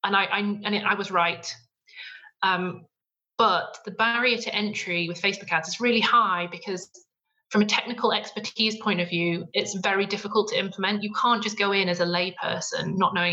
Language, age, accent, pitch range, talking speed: English, 30-49, British, 180-220 Hz, 190 wpm